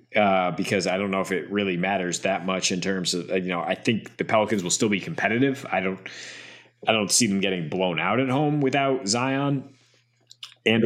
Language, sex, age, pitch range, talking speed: English, male, 20-39, 95-125 Hz, 210 wpm